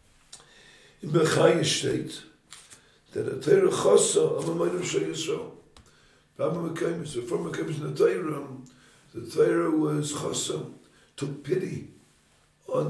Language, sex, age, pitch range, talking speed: English, male, 60-79, 140-175 Hz, 115 wpm